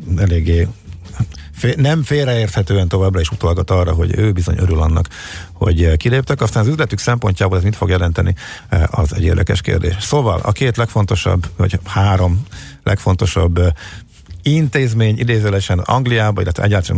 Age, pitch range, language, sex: 50-69, 90-110 Hz, Hungarian, male